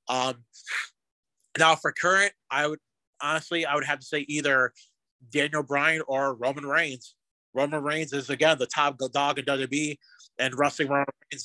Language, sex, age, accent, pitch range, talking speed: Danish, male, 30-49, American, 130-150 Hz, 160 wpm